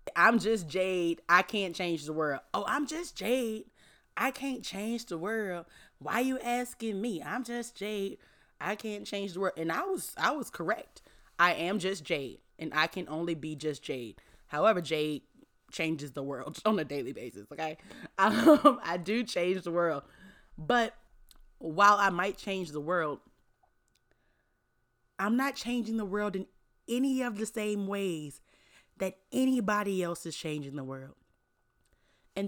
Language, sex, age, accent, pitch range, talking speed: English, female, 20-39, American, 155-210 Hz, 165 wpm